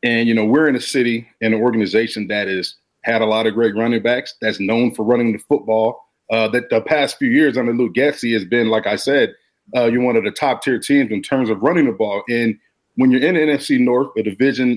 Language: English